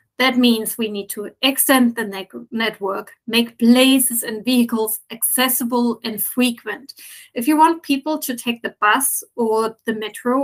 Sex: female